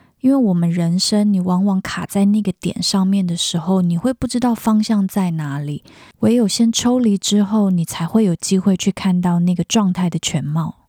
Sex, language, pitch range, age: female, Chinese, 175-225 Hz, 20-39